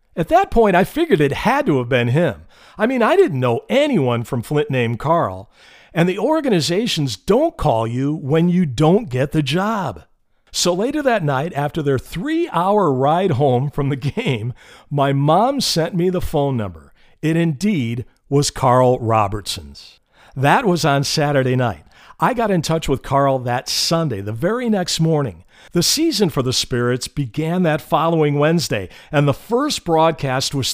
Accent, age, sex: American, 50-69, male